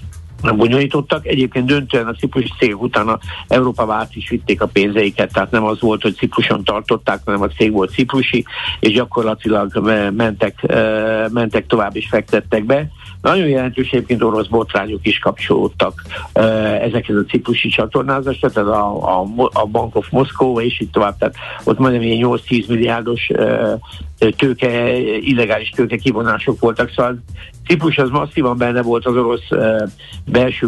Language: Hungarian